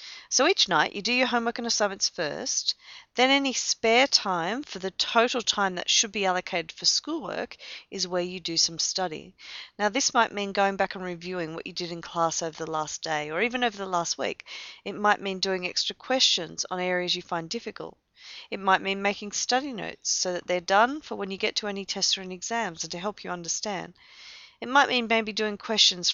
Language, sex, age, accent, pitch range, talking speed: English, female, 40-59, Australian, 180-225 Hz, 215 wpm